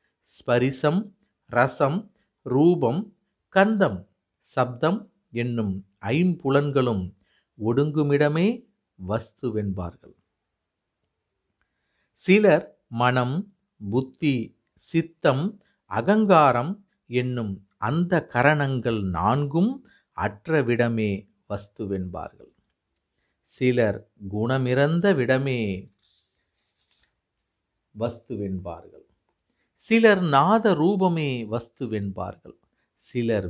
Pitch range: 105-170 Hz